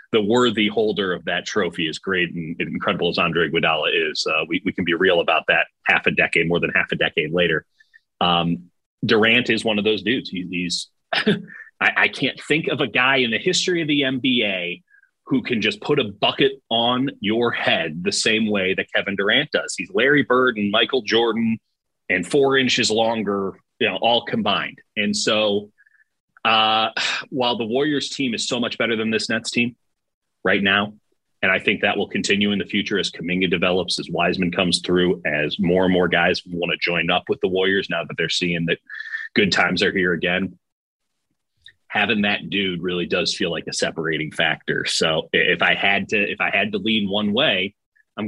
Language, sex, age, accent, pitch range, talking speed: English, male, 30-49, American, 95-125 Hz, 195 wpm